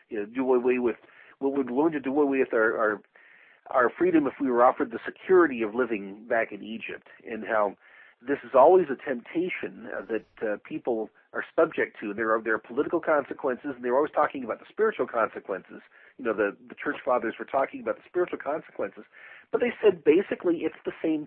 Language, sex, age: English, male, 50-69